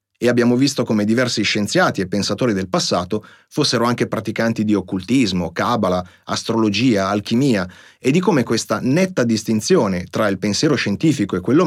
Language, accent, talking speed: Italian, native, 155 wpm